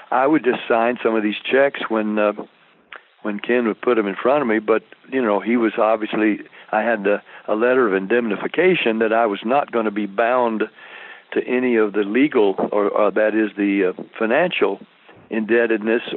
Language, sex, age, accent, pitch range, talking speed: English, male, 60-79, American, 105-125 Hz, 195 wpm